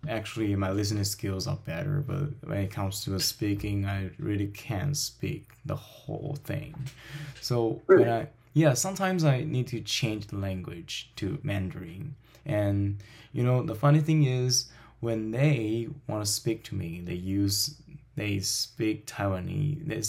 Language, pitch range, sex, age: Chinese, 105-150 Hz, male, 10-29